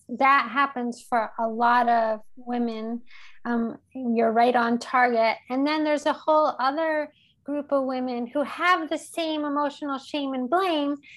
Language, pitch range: English, 230-270 Hz